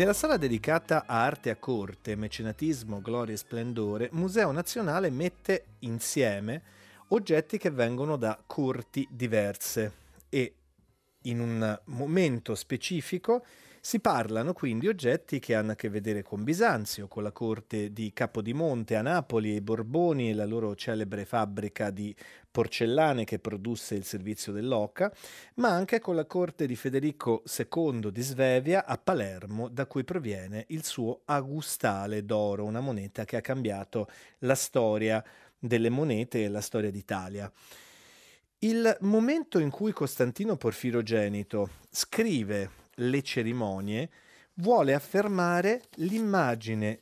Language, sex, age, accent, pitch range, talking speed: Italian, male, 40-59, native, 105-160 Hz, 130 wpm